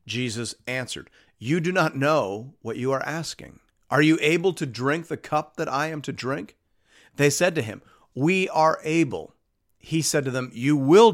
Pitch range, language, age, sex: 120-165 Hz, English, 50-69, male